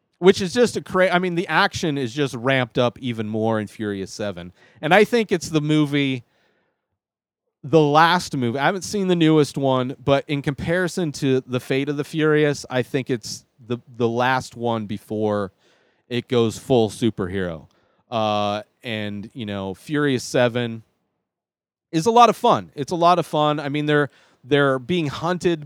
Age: 30-49